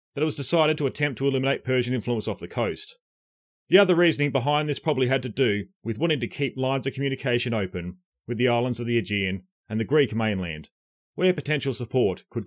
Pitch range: 110-160 Hz